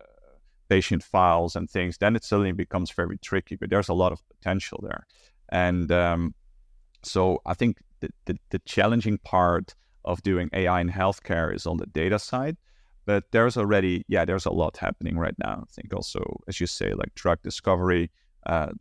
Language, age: English, 30-49